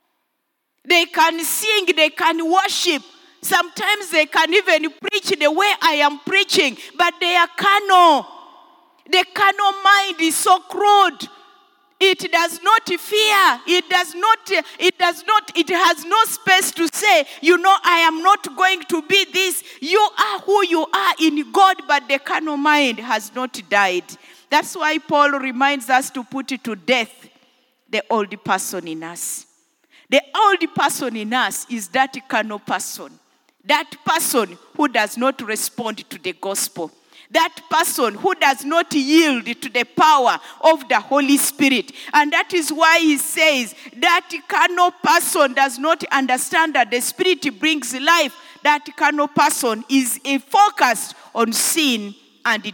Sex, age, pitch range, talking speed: female, 50-69, 270-360 Hz, 155 wpm